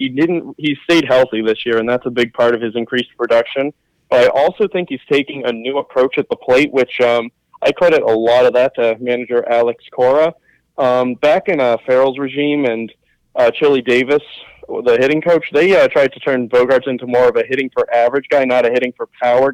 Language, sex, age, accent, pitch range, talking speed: English, male, 20-39, American, 120-140 Hz, 220 wpm